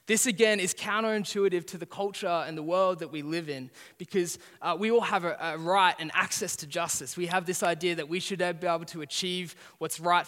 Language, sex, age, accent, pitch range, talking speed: English, male, 20-39, Australian, 150-190 Hz, 230 wpm